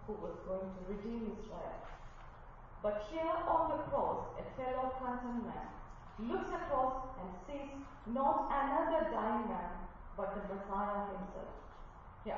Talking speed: 135 wpm